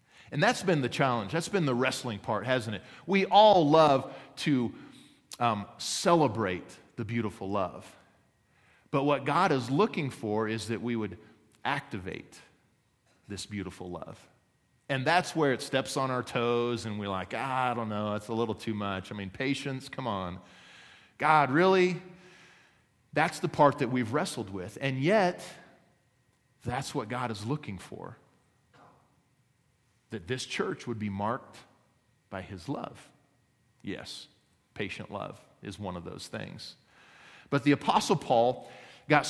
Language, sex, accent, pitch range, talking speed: English, male, American, 110-145 Hz, 150 wpm